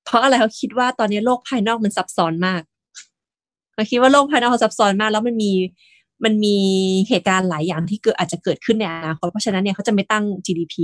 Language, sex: Thai, female